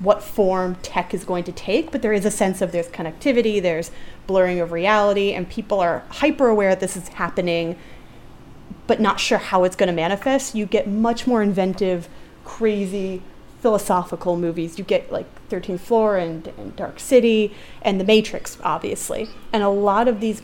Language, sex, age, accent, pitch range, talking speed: English, female, 30-49, American, 170-215 Hz, 180 wpm